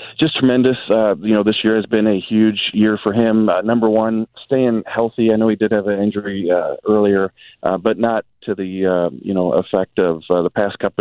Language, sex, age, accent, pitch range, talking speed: English, male, 40-59, American, 100-120 Hz, 230 wpm